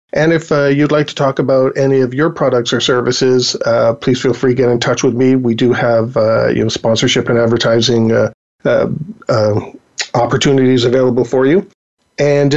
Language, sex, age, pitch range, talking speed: English, male, 40-59, 125-145 Hz, 195 wpm